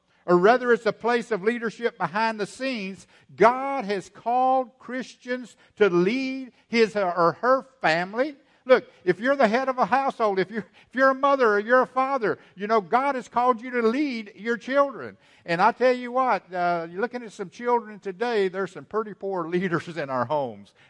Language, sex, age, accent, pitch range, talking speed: English, male, 60-79, American, 130-220 Hz, 190 wpm